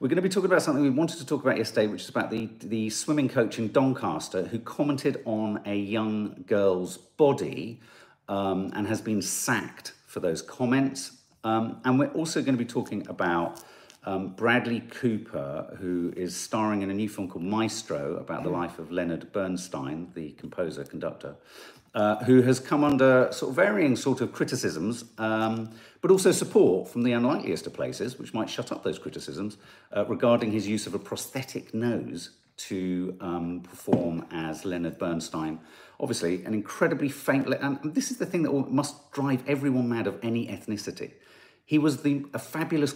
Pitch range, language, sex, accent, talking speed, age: 100-135 Hz, English, male, British, 180 wpm, 50-69